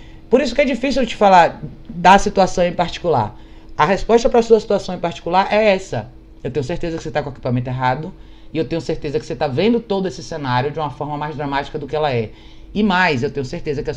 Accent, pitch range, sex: Brazilian, 125-165 Hz, male